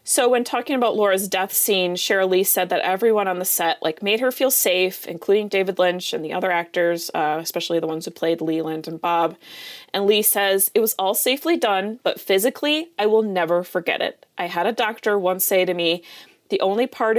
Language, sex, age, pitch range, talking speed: English, female, 20-39, 175-220 Hz, 215 wpm